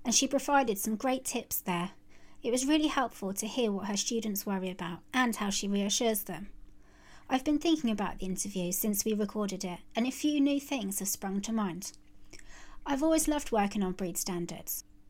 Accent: British